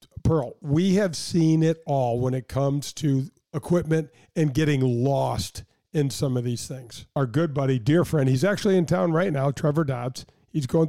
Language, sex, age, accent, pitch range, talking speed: English, male, 50-69, American, 135-175 Hz, 185 wpm